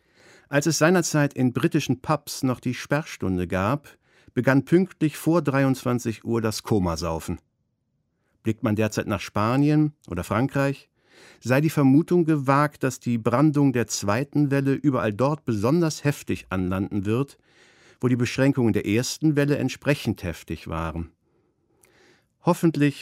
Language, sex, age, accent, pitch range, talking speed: German, male, 50-69, German, 105-145 Hz, 130 wpm